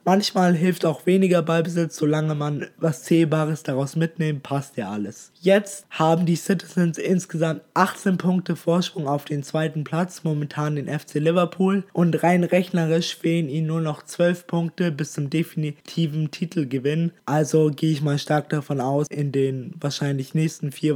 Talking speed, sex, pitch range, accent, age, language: 155 wpm, male, 150-175 Hz, German, 20-39, German